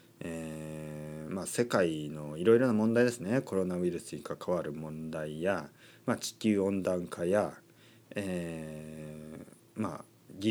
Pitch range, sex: 85-125 Hz, male